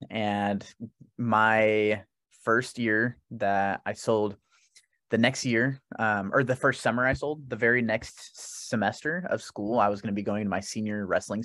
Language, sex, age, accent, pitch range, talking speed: English, male, 20-39, American, 100-120 Hz, 175 wpm